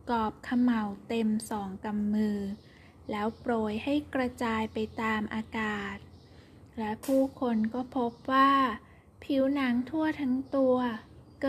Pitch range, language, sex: 220-250 Hz, Thai, female